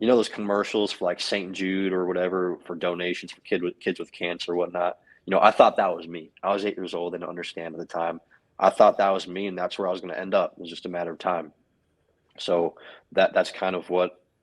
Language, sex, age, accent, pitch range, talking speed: English, male, 20-39, American, 85-95 Hz, 265 wpm